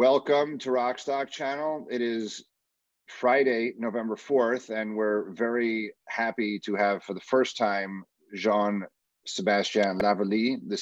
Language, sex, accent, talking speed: English, male, American, 120 wpm